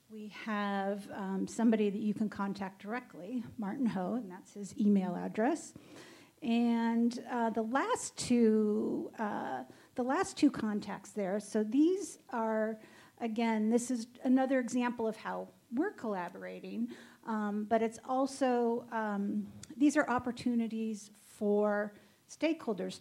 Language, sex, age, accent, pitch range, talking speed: English, female, 50-69, American, 205-240 Hz, 130 wpm